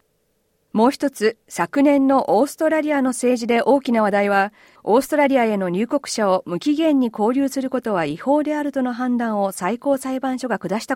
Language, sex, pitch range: Japanese, female, 210-275 Hz